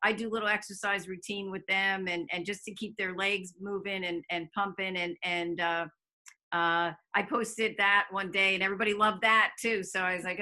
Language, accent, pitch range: English, American, 175-210 Hz